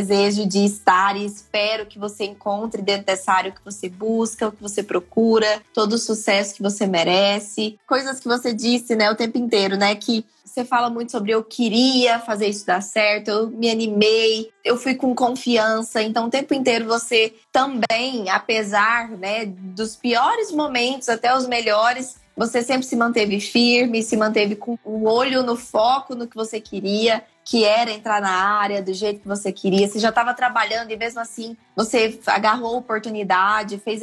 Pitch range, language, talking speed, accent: 205-240 Hz, Portuguese, 185 wpm, Brazilian